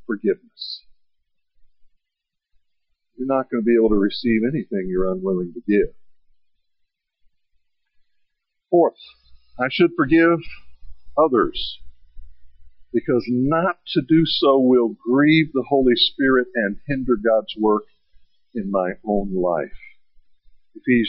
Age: 50-69